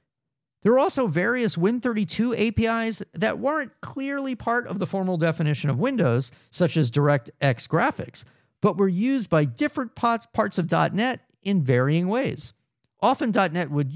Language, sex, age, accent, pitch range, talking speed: English, male, 40-59, American, 135-205 Hz, 145 wpm